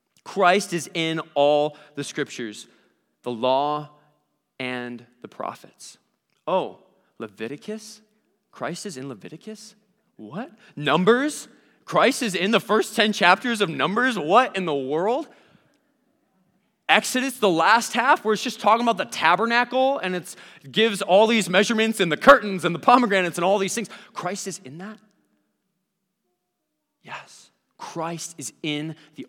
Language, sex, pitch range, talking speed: English, male, 140-200 Hz, 140 wpm